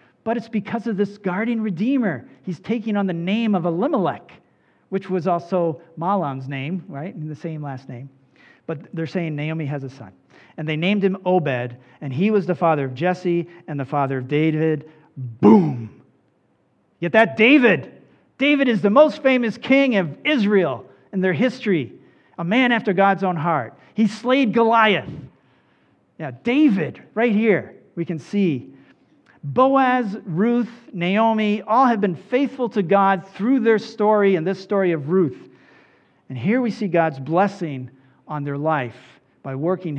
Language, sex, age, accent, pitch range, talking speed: English, male, 50-69, American, 140-210 Hz, 160 wpm